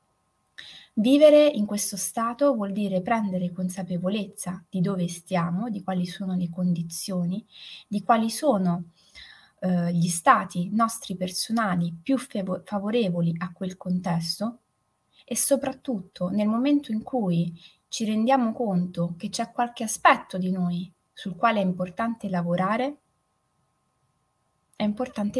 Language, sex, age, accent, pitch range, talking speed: Italian, female, 20-39, native, 180-230 Hz, 120 wpm